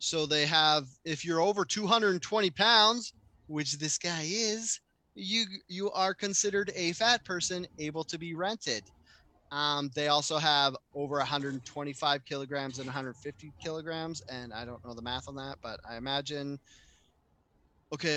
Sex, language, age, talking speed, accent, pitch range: male, English, 20-39, 150 wpm, American, 130-185 Hz